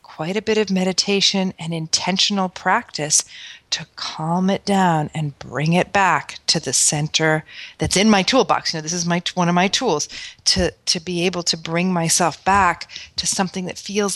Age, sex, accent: 40-59, female, American